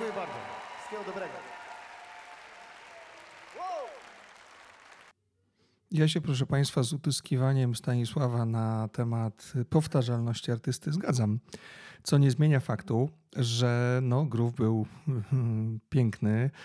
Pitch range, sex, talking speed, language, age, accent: 115-135 Hz, male, 90 wpm, Polish, 40-59, native